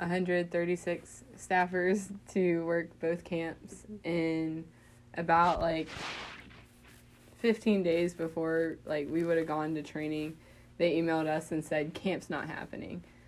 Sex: female